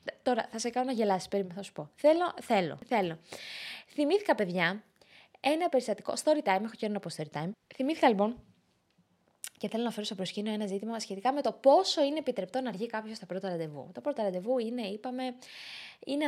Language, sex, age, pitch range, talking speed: Greek, female, 20-39, 195-270 Hz, 190 wpm